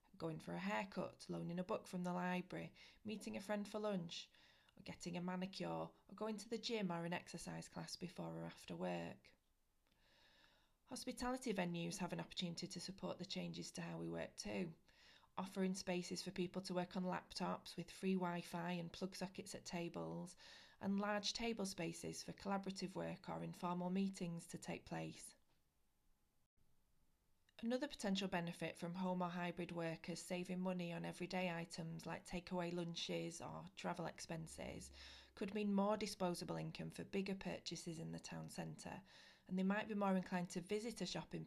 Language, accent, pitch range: English, British, 165-190 Hz